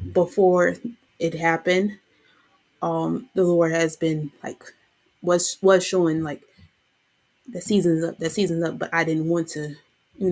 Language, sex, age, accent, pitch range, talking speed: English, female, 20-39, American, 155-180 Hz, 145 wpm